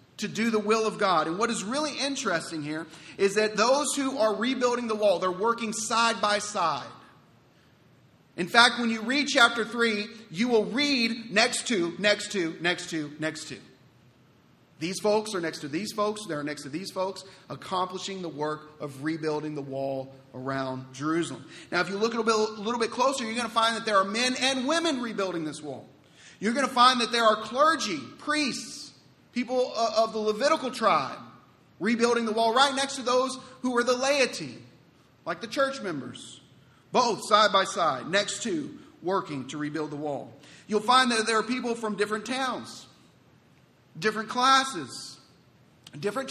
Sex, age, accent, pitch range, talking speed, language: male, 40-59, American, 165-240 Hz, 180 wpm, English